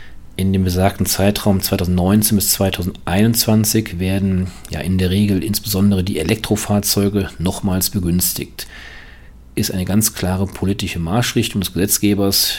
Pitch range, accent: 95-110 Hz, German